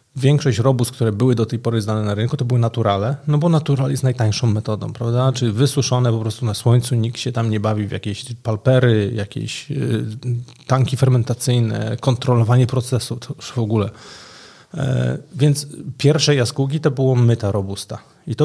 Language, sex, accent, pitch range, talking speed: Polish, male, native, 110-135 Hz, 170 wpm